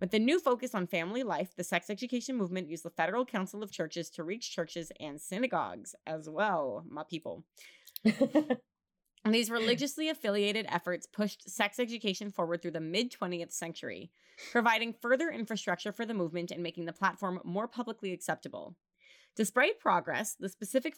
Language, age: English, 30-49